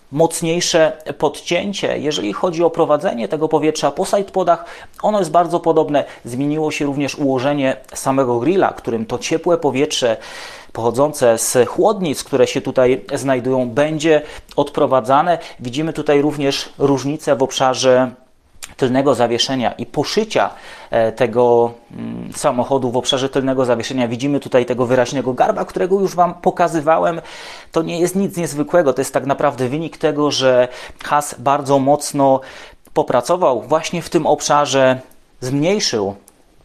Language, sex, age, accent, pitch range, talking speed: English, male, 30-49, Polish, 130-160 Hz, 130 wpm